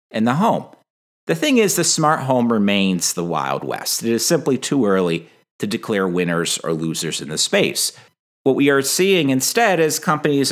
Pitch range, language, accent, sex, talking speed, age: 100-150 Hz, English, American, male, 190 wpm, 50-69